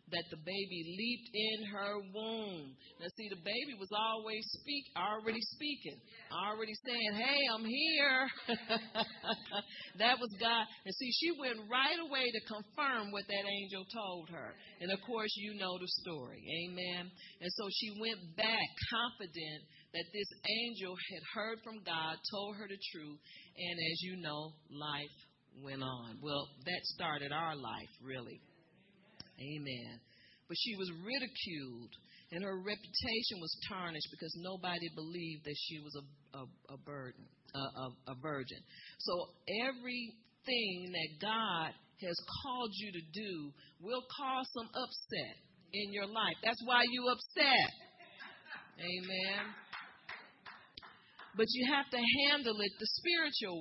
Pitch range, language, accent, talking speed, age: 165-230 Hz, English, American, 145 wpm, 40-59